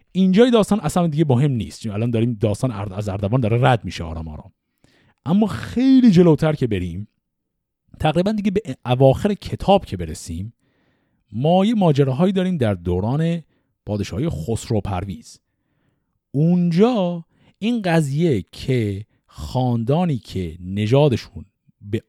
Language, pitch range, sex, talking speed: Persian, 100-160 Hz, male, 125 wpm